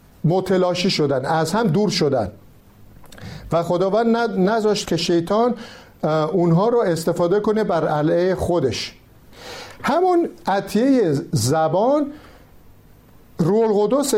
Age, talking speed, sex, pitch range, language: 50-69, 95 wpm, male, 150-200 Hz, Persian